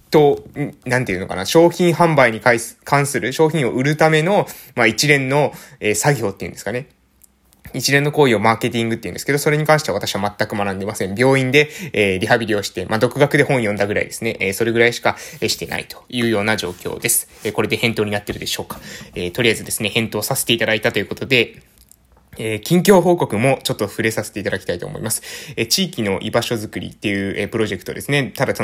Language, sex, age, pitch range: Japanese, male, 20-39, 105-150 Hz